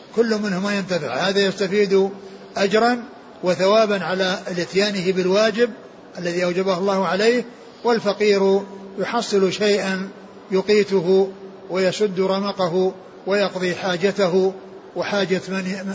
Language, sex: Arabic, male